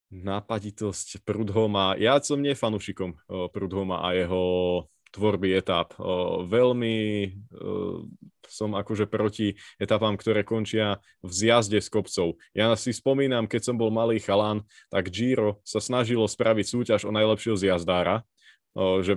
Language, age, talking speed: Slovak, 20-39, 125 wpm